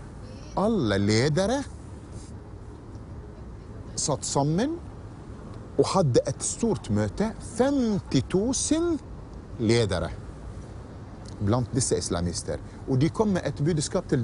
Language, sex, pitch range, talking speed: English, male, 100-140 Hz, 75 wpm